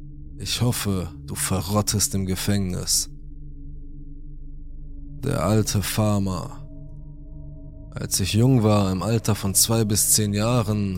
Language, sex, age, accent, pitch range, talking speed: German, male, 20-39, German, 95-115 Hz, 110 wpm